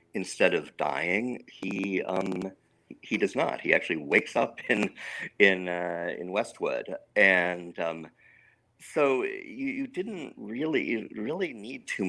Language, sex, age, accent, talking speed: English, male, 50-69, American, 135 wpm